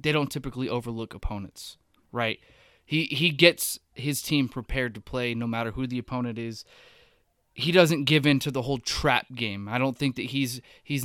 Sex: male